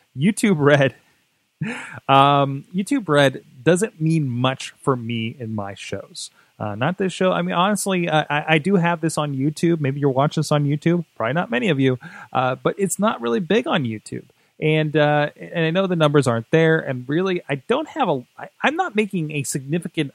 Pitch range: 120-165 Hz